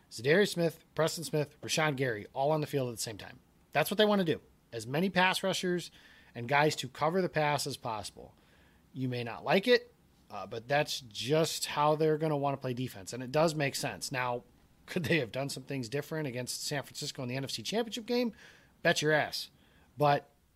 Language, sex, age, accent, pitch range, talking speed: English, male, 30-49, American, 120-155 Hz, 215 wpm